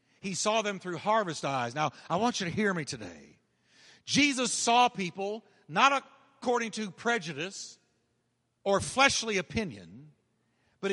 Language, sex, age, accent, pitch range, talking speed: English, male, 50-69, American, 170-230 Hz, 135 wpm